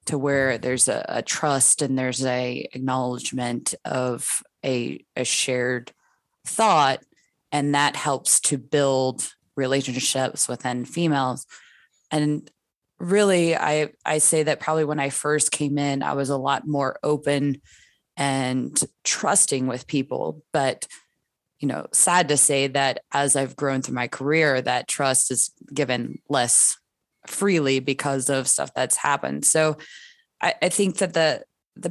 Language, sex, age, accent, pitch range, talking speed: English, female, 20-39, American, 130-150 Hz, 145 wpm